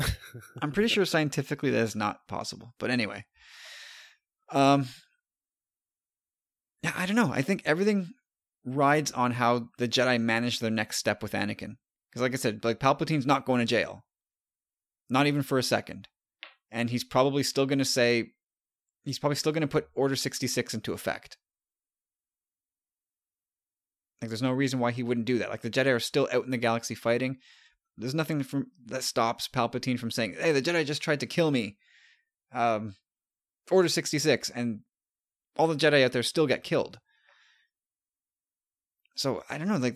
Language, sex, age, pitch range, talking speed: English, male, 30-49, 120-155 Hz, 170 wpm